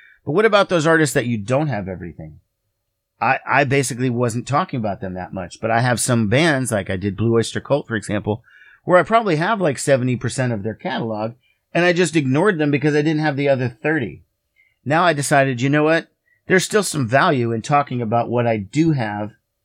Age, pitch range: 40-59, 115-145 Hz